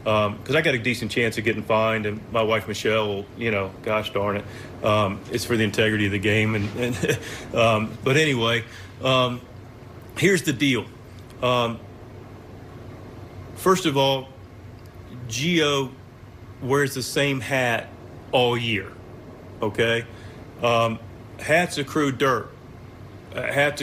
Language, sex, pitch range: English, male, 115-150 Hz